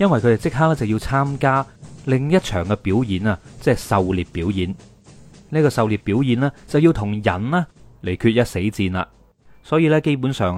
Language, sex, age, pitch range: Chinese, male, 30-49, 100-135 Hz